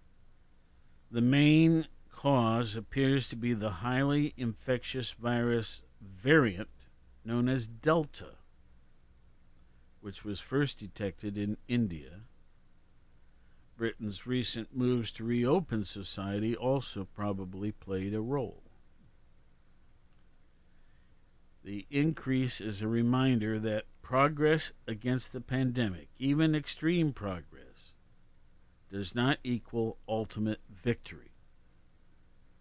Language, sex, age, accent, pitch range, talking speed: English, male, 50-69, American, 90-125 Hz, 90 wpm